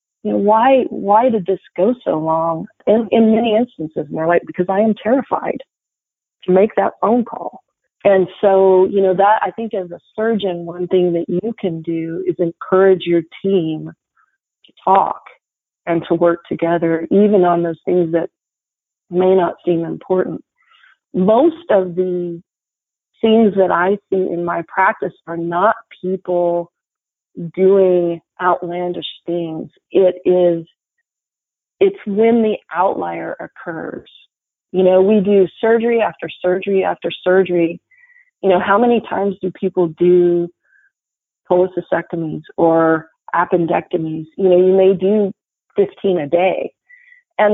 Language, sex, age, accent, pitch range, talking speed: English, female, 40-59, American, 175-200 Hz, 140 wpm